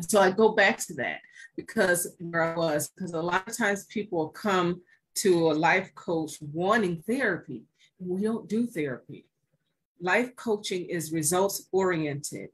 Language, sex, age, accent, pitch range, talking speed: English, female, 40-59, American, 160-195 Hz, 155 wpm